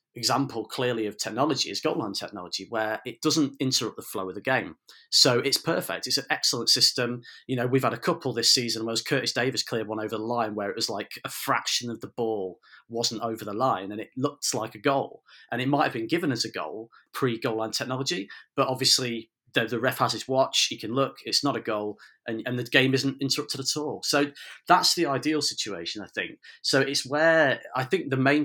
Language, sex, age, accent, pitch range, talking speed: English, male, 30-49, British, 110-135 Hz, 230 wpm